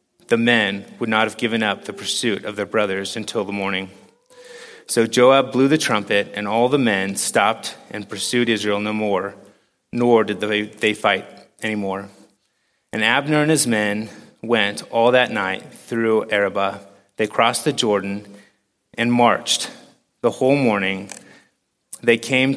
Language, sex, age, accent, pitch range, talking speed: English, male, 30-49, American, 105-120 Hz, 150 wpm